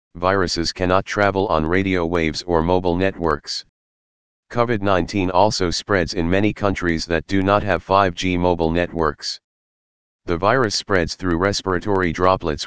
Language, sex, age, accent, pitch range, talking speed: English, male, 40-59, American, 85-100 Hz, 135 wpm